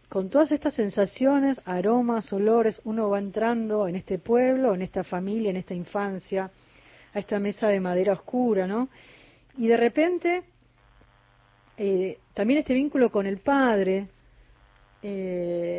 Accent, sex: Argentinian, female